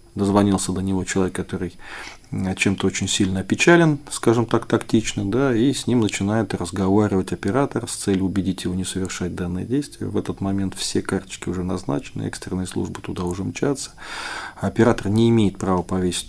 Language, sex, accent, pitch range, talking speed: Russian, male, native, 95-115 Hz, 160 wpm